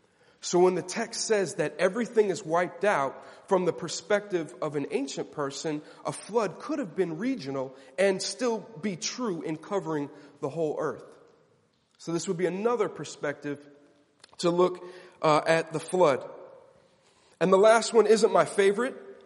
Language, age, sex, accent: English, 30-49, male, American